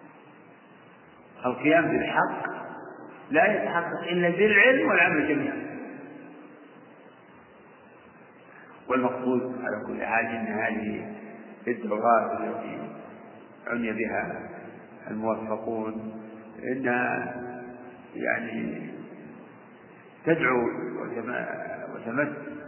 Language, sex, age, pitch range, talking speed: Arabic, male, 50-69, 115-140 Hz, 60 wpm